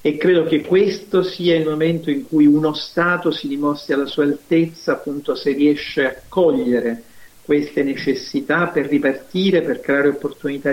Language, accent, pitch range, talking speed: Italian, native, 145-175 Hz, 155 wpm